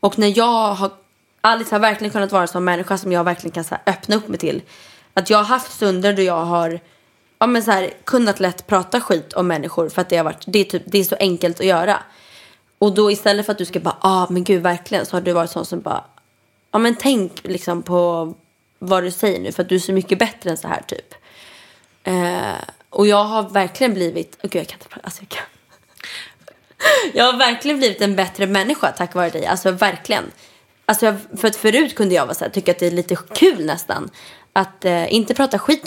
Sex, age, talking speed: female, 20-39, 225 wpm